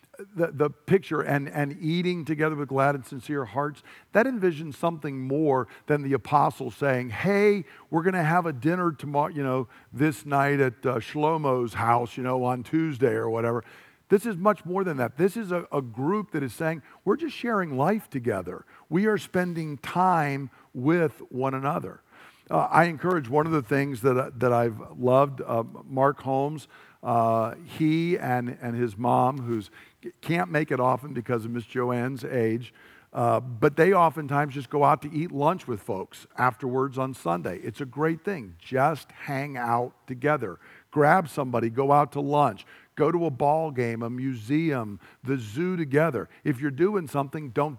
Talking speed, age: 180 wpm, 50-69